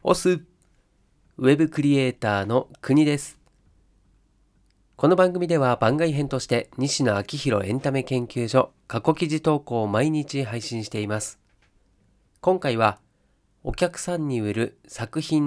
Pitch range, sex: 105-145 Hz, male